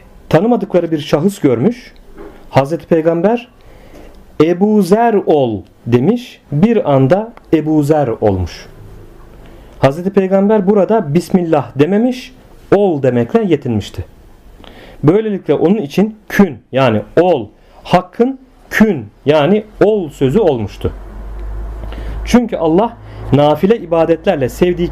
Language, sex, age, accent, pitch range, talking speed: Turkish, male, 40-59, native, 135-200 Hz, 95 wpm